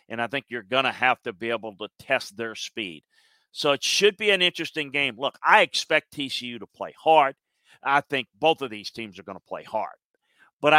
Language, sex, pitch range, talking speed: English, male, 120-155 Hz, 220 wpm